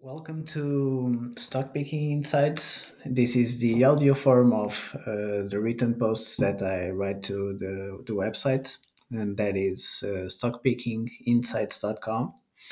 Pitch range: 105-130 Hz